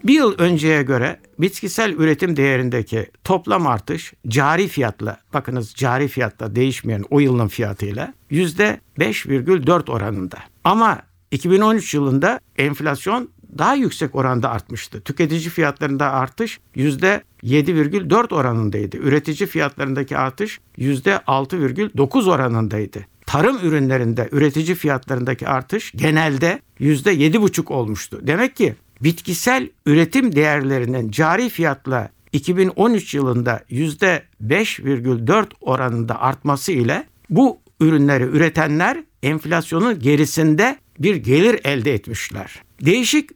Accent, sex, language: native, male, Turkish